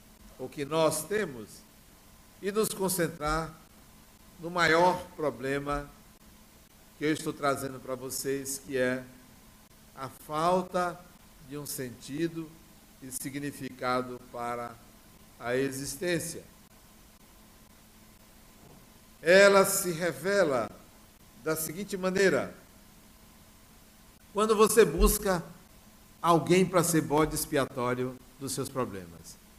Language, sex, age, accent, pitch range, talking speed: Portuguese, male, 60-79, Brazilian, 125-175 Hz, 90 wpm